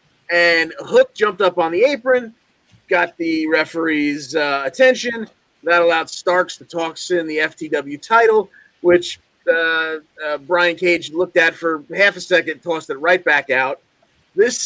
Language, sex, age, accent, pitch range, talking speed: English, male, 30-49, American, 155-190 Hz, 155 wpm